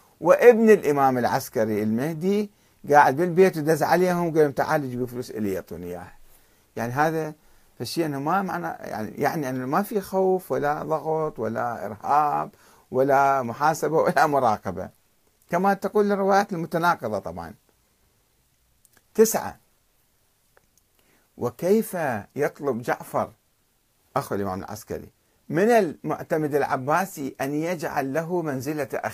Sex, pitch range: male, 135-185 Hz